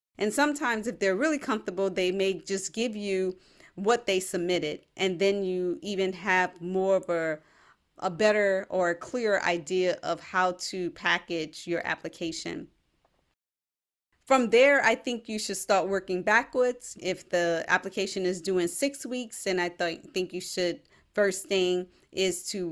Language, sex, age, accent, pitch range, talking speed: English, female, 30-49, American, 175-205 Hz, 160 wpm